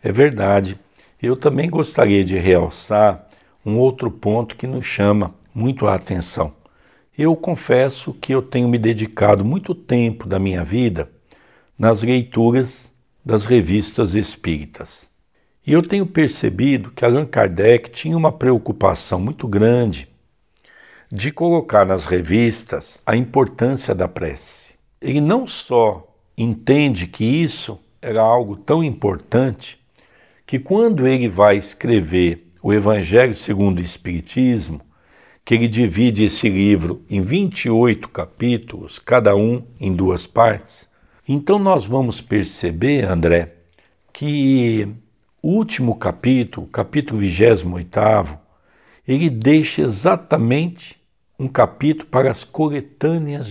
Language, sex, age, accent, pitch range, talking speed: Portuguese, male, 60-79, Brazilian, 100-135 Hz, 120 wpm